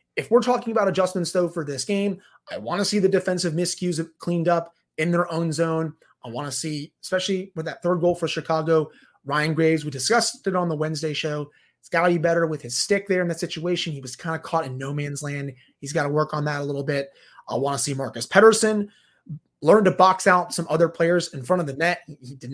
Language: English